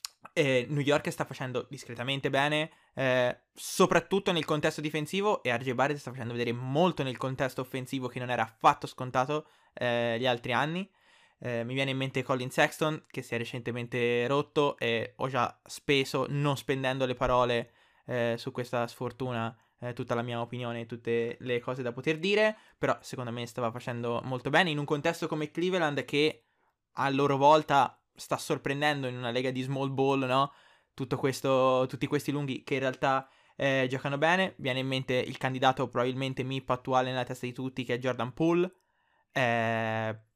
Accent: native